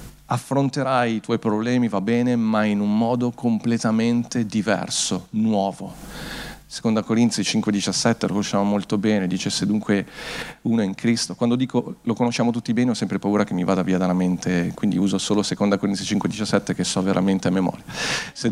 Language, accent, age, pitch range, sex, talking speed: Italian, native, 40-59, 100-125 Hz, male, 175 wpm